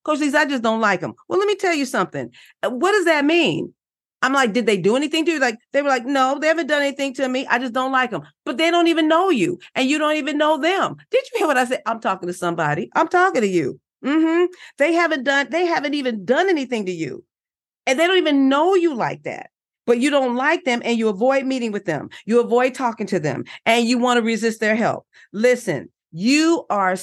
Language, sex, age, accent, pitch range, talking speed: English, female, 40-59, American, 200-285 Hz, 245 wpm